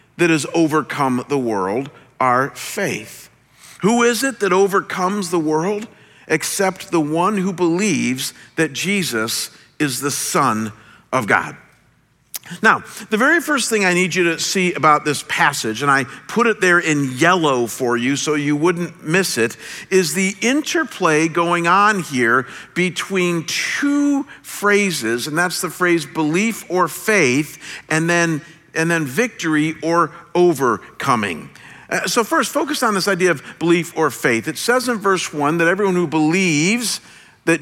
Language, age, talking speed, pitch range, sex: English, 50-69, 155 wpm, 155-195 Hz, male